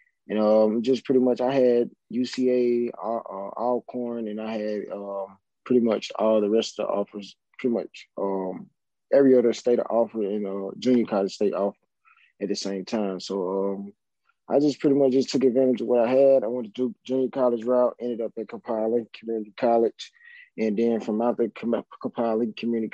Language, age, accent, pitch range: English, 20-39, American, 105-115 Hz